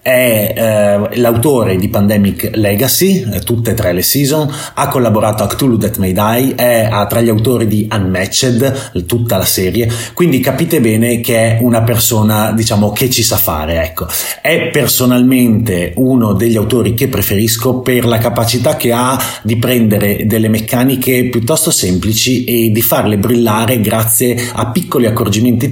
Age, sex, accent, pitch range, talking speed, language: 30-49, male, native, 110-130 Hz, 150 wpm, Italian